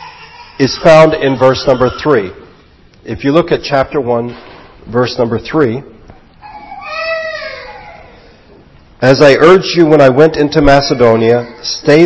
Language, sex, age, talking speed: English, male, 50-69, 125 wpm